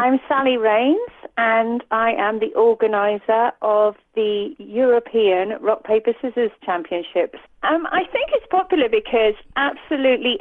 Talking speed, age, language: 125 wpm, 40-59, English